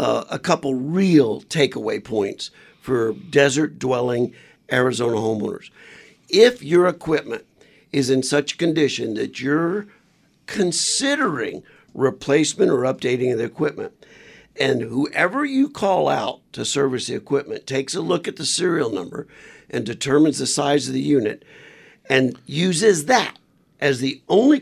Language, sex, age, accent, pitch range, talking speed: English, male, 50-69, American, 130-175 Hz, 135 wpm